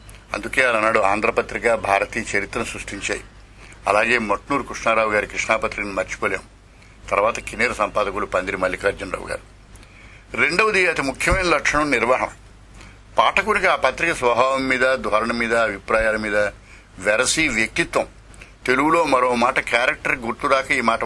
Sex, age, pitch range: male, 60-79, 105-130 Hz